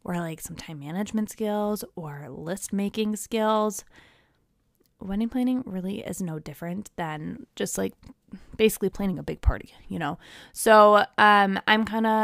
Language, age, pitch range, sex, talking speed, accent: English, 20-39, 180-215 Hz, female, 145 wpm, American